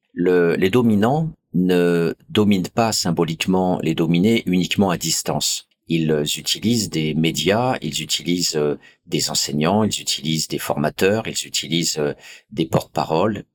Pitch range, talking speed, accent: 75-105 Hz, 125 wpm, French